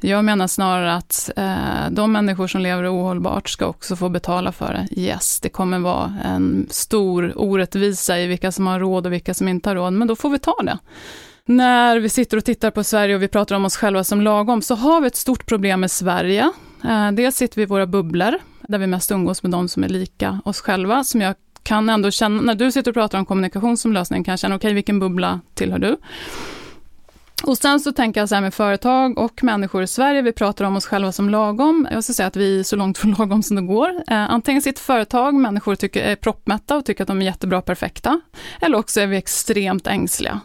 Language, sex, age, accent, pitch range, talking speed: English, female, 20-39, Swedish, 190-250 Hz, 230 wpm